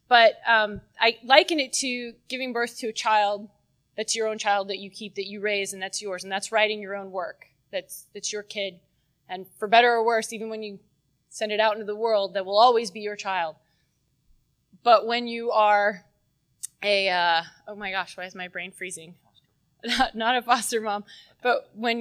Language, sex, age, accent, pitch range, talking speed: English, female, 20-39, American, 195-245 Hz, 200 wpm